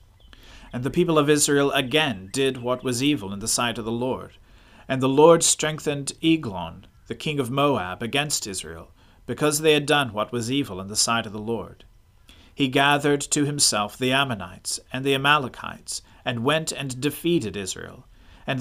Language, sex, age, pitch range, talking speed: English, male, 40-59, 105-145 Hz, 175 wpm